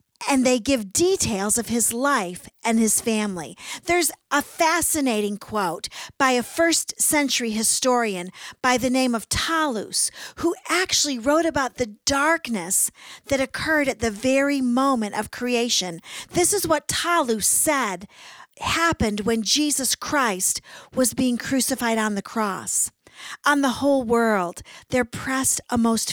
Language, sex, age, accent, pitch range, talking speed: English, female, 40-59, American, 215-280 Hz, 140 wpm